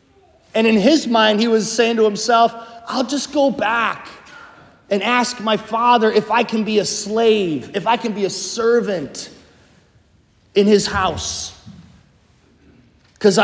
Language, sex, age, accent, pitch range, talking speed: English, male, 30-49, American, 190-240 Hz, 145 wpm